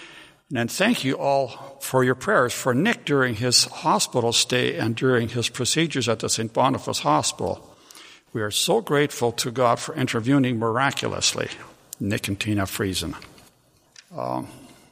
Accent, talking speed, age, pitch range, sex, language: American, 145 wpm, 60-79, 115-135 Hz, male, English